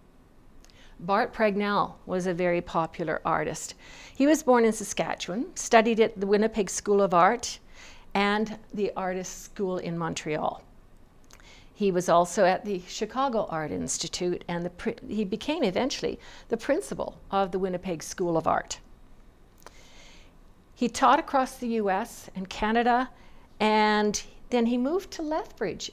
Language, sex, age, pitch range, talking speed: English, female, 50-69, 190-240 Hz, 135 wpm